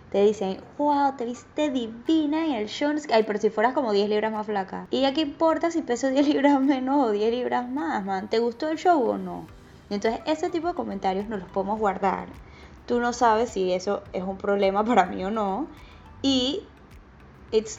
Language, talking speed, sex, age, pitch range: Spanish, 205 wpm, female, 10-29, 200-255 Hz